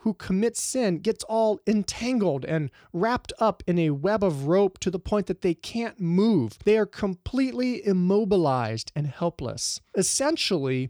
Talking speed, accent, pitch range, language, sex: 155 wpm, American, 140-205 Hz, English, male